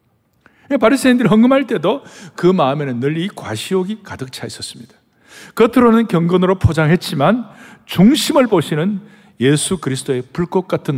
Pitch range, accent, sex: 135-200 Hz, native, male